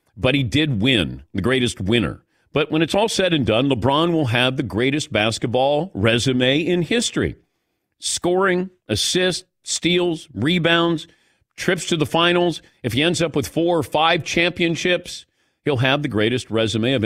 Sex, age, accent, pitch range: male, 50-69, American, 130-180 Hz